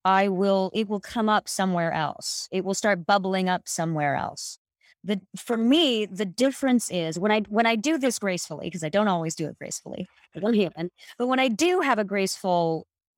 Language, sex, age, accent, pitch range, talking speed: English, female, 30-49, American, 170-225 Hz, 200 wpm